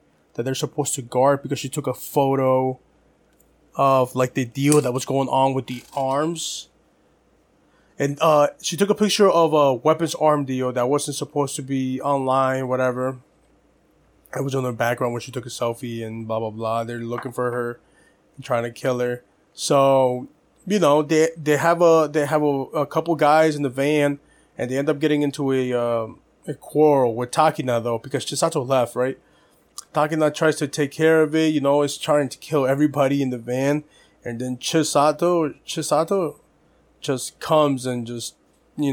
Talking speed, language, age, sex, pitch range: 185 wpm, English, 20-39, male, 125-150 Hz